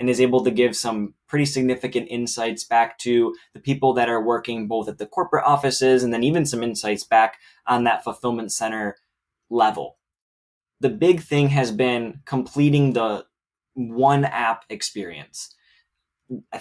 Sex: male